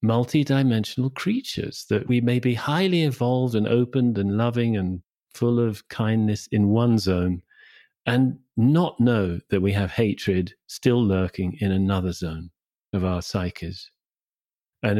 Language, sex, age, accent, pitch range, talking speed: English, male, 40-59, British, 100-125 Hz, 140 wpm